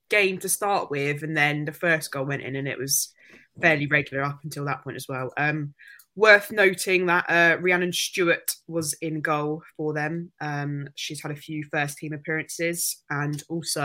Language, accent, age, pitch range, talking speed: English, British, 20-39, 140-165 Hz, 190 wpm